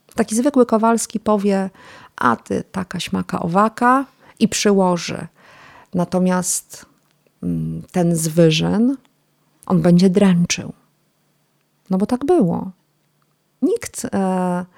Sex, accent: female, native